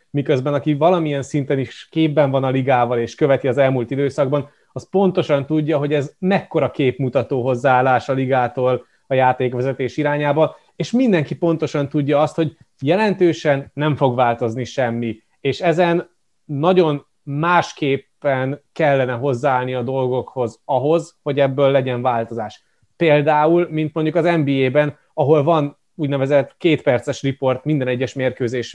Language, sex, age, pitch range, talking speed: Hungarian, male, 30-49, 130-155 Hz, 135 wpm